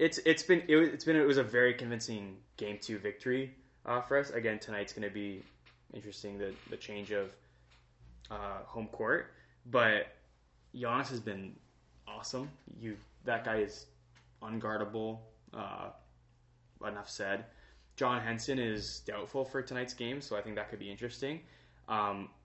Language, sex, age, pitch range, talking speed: English, male, 20-39, 100-115 Hz, 160 wpm